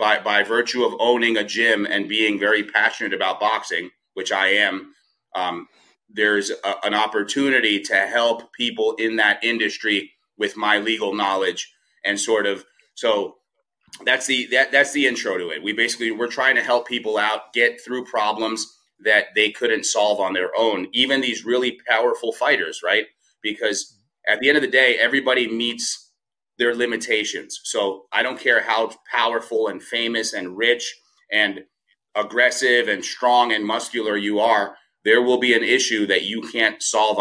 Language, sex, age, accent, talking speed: English, male, 30-49, American, 165 wpm